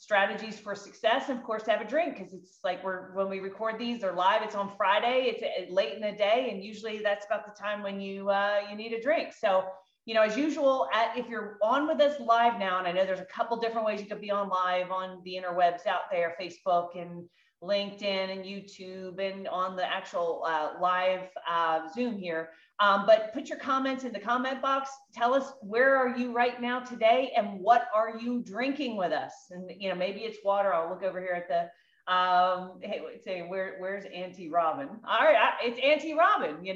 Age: 30-49